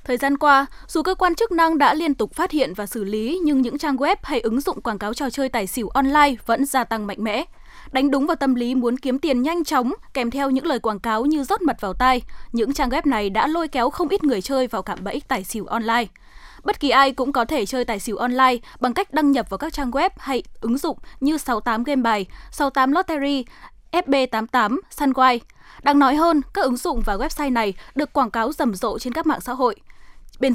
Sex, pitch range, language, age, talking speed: female, 235-300 Hz, Vietnamese, 10-29, 240 wpm